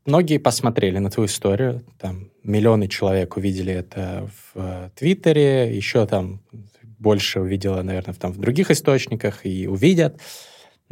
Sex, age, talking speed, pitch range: male, 20-39, 130 wpm, 100-135 Hz